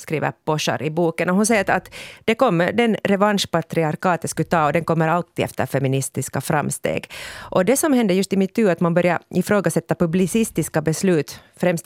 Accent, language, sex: Finnish, Swedish, female